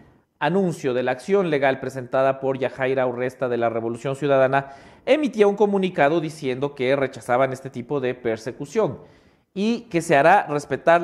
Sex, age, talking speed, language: male, 40-59, 150 wpm, English